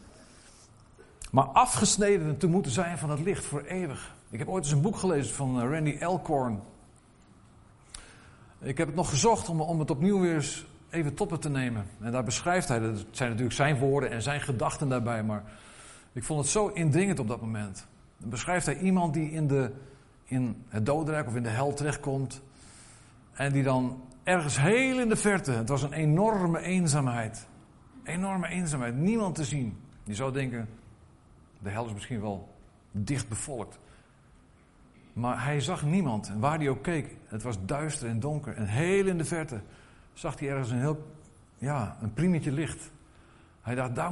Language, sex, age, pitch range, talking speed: Dutch, male, 50-69, 120-160 Hz, 175 wpm